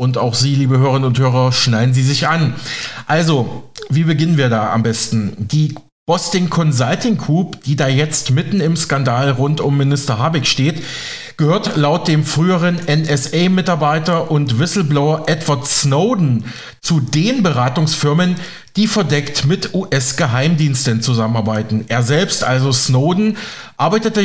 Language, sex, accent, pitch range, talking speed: German, male, German, 130-175 Hz, 135 wpm